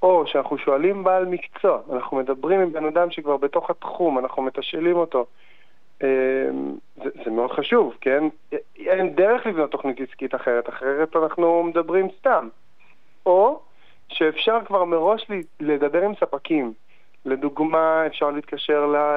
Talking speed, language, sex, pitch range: 130 wpm, Hebrew, male, 135-175 Hz